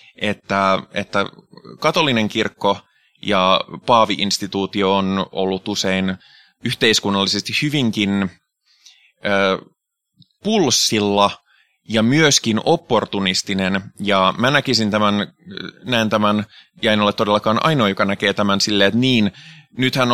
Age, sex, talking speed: 20-39, male, 100 wpm